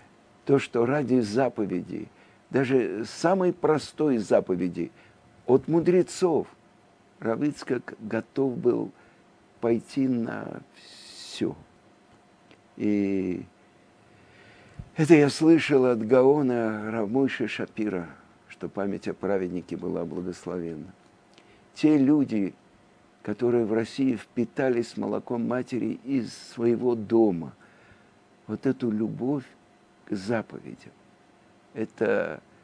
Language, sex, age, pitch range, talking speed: Russian, male, 60-79, 105-135 Hz, 85 wpm